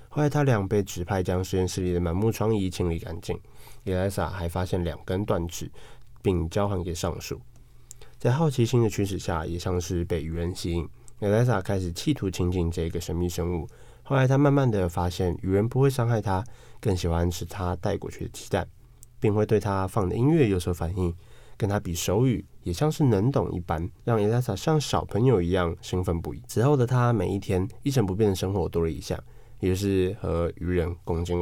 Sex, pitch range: male, 90-120 Hz